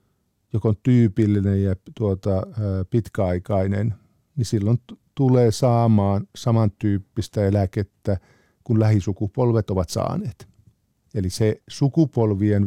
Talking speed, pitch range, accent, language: 100 wpm, 100-115 Hz, native, Finnish